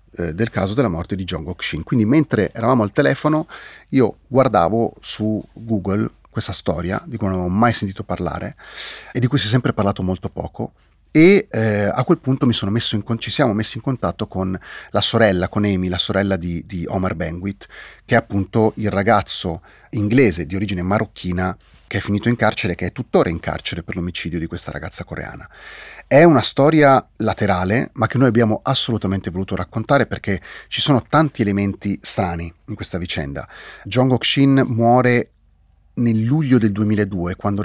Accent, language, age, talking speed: native, Italian, 30-49, 185 wpm